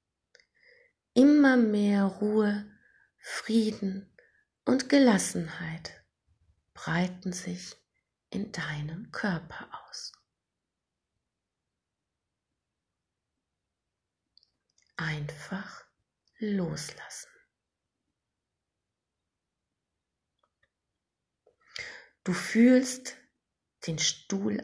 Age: 30-49